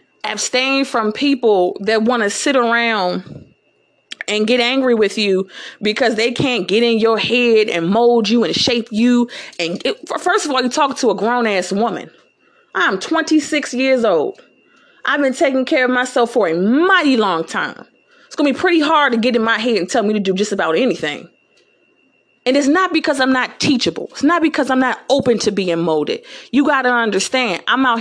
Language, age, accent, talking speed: English, 30-49, American, 195 wpm